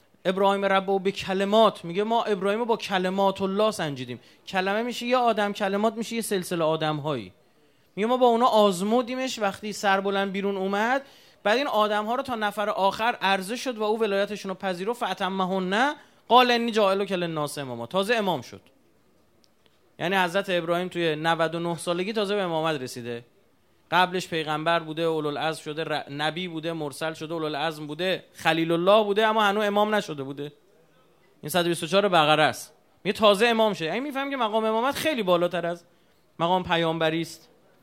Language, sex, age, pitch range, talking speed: Persian, male, 30-49, 165-215 Hz, 170 wpm